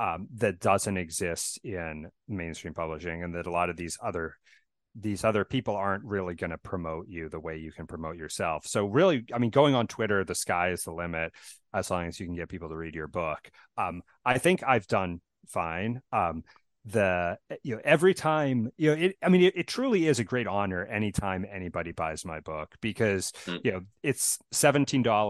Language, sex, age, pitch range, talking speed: English, male, 30-49, 80-105 Hz, 200 wpm